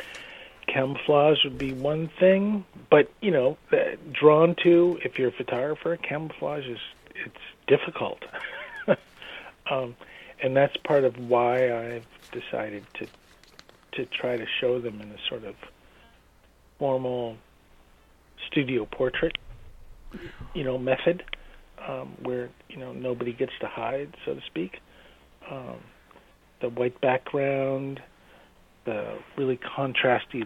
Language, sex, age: English, male, 40-59